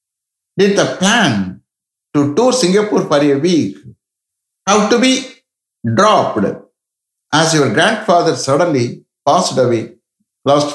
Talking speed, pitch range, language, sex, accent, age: 110 wpm, 120-195 Hz, English, male, Indian, 60-79